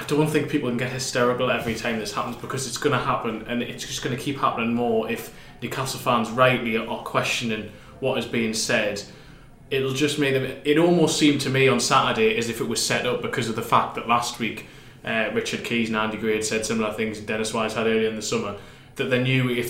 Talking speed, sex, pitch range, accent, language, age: 245 wpm, male, 115-130 Hz, British, English, 20-39